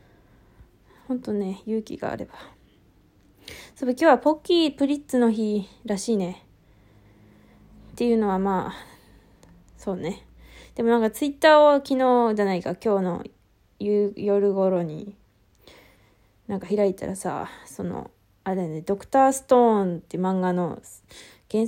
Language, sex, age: Japanese, female, 20-39